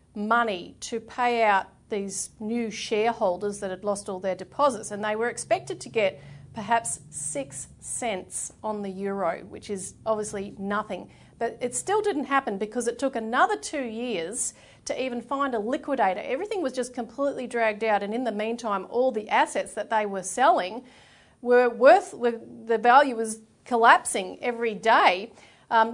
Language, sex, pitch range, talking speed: English, female, 205-245 Hz, 165 wpm